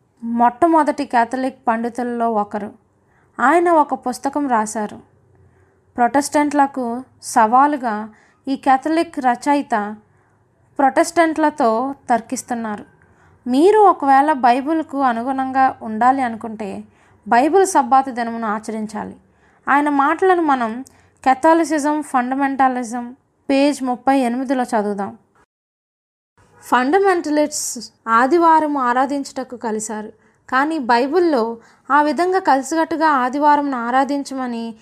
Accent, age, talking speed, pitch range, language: native, 20-39, 80 wpm, 230-290 Hz, Telugu